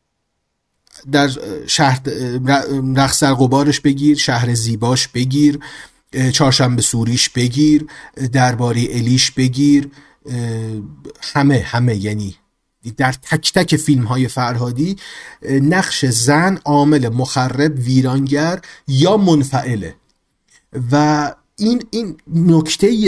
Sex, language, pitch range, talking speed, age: male, Persian, 125-150 Hz, 90 wpm, 30-49